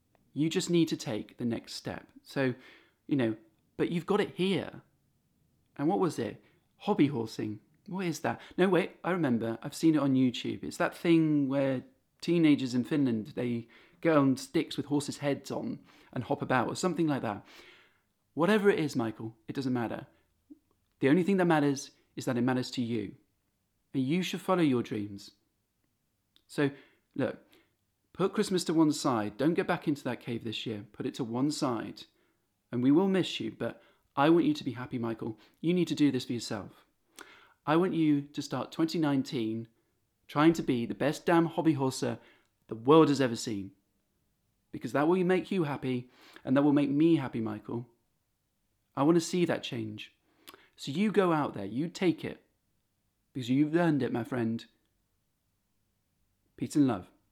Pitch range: 115-165 Hz